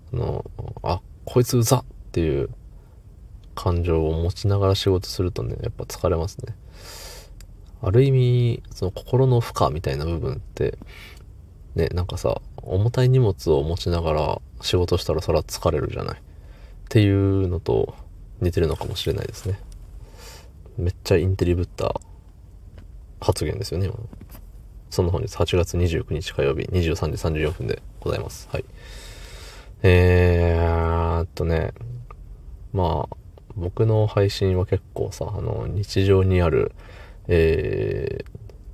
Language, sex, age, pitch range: Japanese, male, 20-39, 85-100 Hz